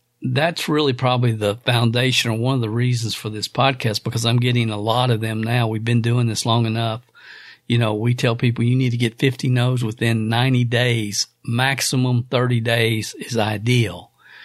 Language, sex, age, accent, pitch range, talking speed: English, male, 50-69, American, 115-130 Hz, 190 wpm